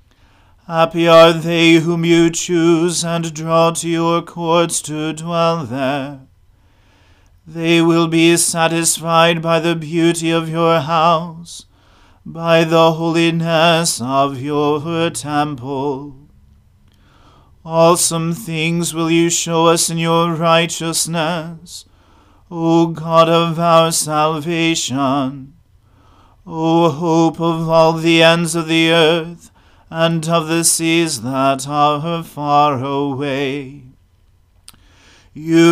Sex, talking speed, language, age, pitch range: male, 105 wpm, English, 40-59, 135-165 Hz